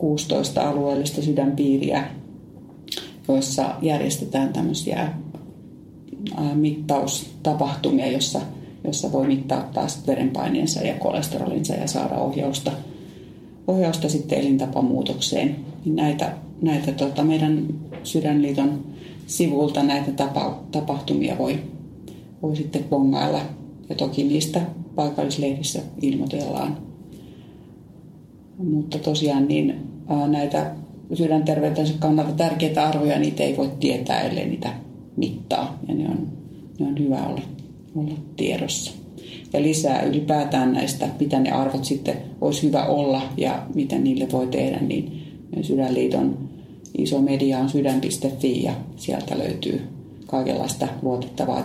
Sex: female